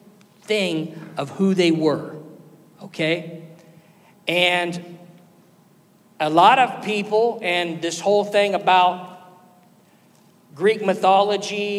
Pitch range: 175-230 Hz